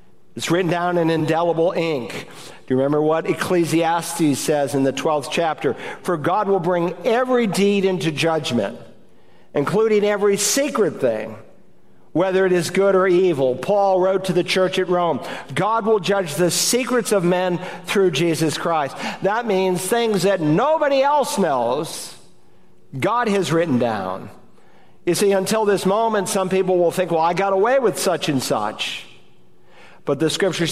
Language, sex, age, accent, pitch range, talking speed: English, male, 50-69, American, 175-230 Hz, 160 wpm